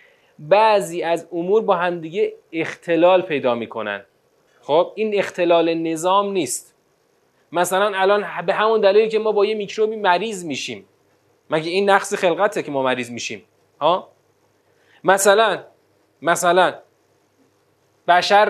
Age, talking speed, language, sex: 30-49, 125 wpm, Persian, male